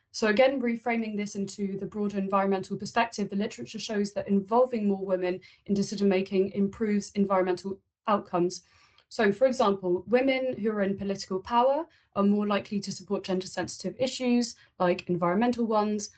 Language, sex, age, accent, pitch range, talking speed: English, female, 20-39, British, 190-220 Hz, 150 wpm